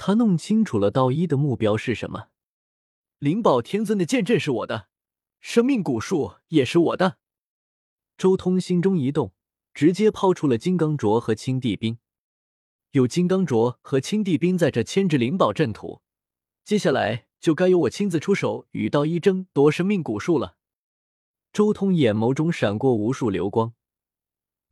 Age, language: 20-39, Chinese